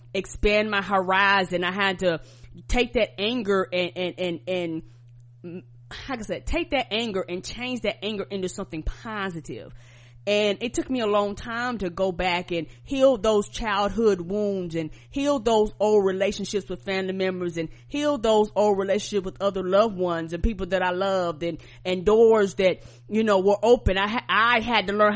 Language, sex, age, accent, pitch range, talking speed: English, female, 30-49, American, 170-210 Hz, 185 wpm